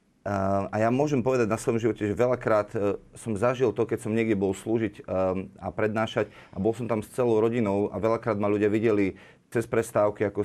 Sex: male